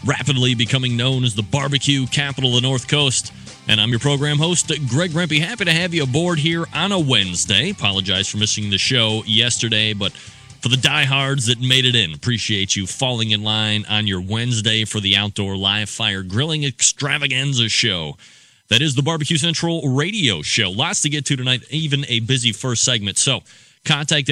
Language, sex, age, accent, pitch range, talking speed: English, male, 30-49, American, 105-135 Hz, 190 wpm